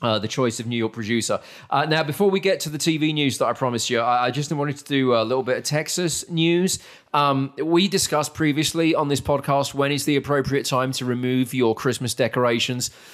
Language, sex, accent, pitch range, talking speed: English, male, British, 120-150 Hz, 225 wpm